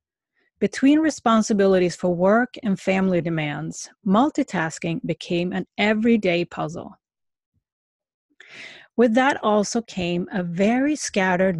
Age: 30-49